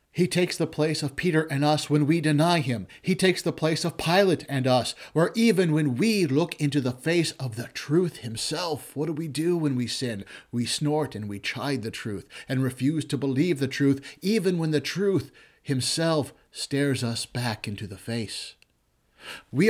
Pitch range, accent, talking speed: 135-180 Hz, American, 195 wpm